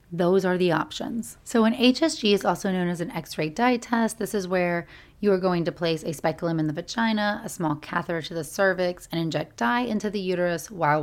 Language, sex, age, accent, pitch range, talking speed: English, female, 30-49, American, 155-195 Hz, 230 wpm